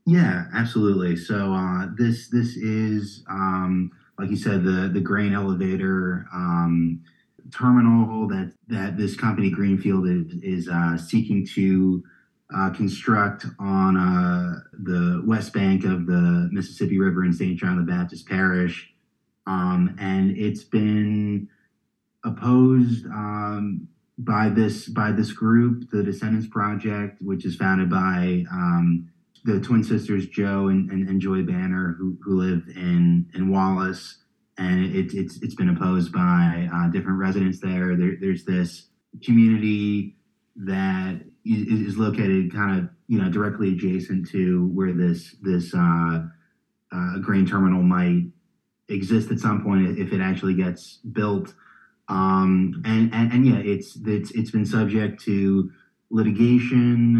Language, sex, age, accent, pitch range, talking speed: English, male, 30-49, American, 90-105 Hz, 135 wpm